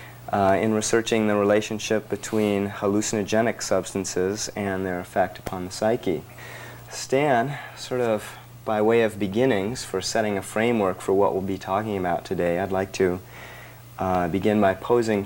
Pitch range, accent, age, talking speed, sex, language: 95-110 Hz, American, 40-59, 155 wpm, male, English